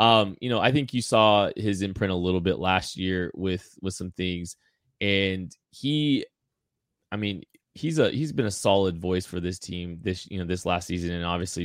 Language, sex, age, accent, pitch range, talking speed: English, male, 20-39, American, 85-100 Hz, 205 wpm